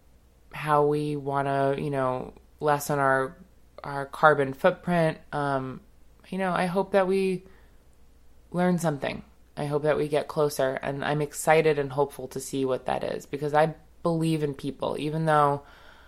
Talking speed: 160 wpm